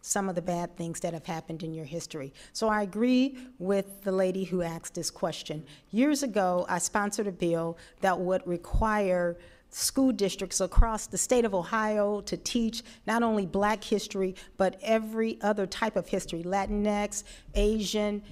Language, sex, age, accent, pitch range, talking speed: English, female, 40-59, American, 190-230 Hz, 165 wpm